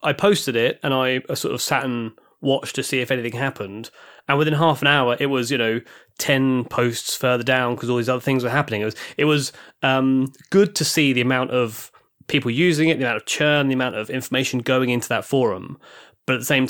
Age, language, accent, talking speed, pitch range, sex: 20-39, English, British, 235 wpm, 115-140 Hz, male